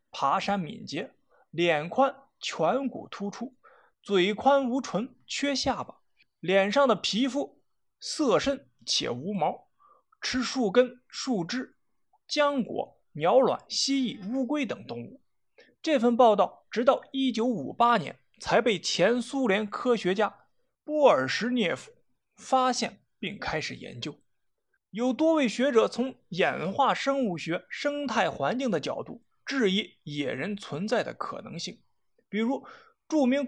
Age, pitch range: 20-39, 210-280 Hz